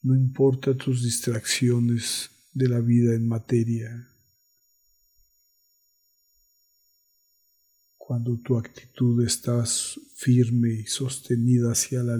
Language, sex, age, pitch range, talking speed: Spanish, male, 50-69, 110-130 Hz, 90 wpm